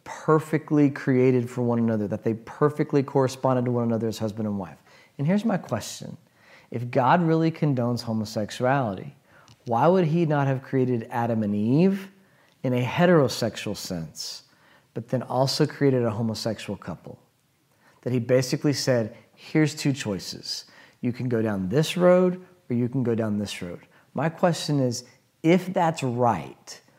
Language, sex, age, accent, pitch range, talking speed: English, male, 40-59, American, 115-145 Hz, 160 wpm